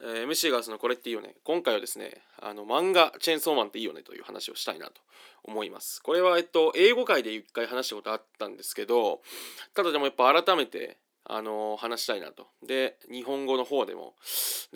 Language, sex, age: Japanese, male, 20-39